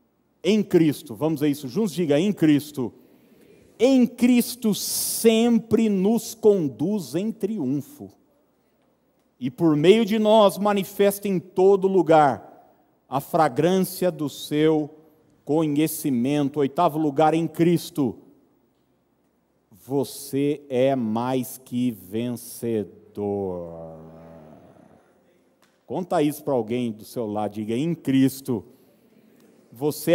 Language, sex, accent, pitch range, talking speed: Portuguese, male, Brazilian, 125-175 Hz, 100 wpm